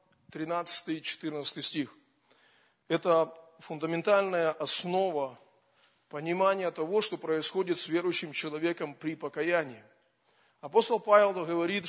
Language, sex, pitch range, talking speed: Russian, male, 160-195 Hz, 85 wpm